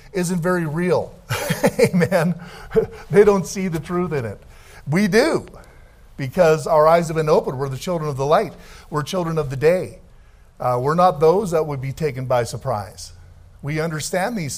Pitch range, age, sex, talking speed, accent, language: 130-175 Hz, 50-69, male, 175 wpm, American, English